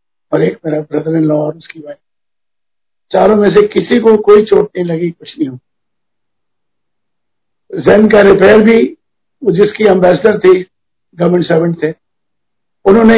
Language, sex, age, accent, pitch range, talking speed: Hindi, male, 50-69, native, 155-210 Hz, 145 wpm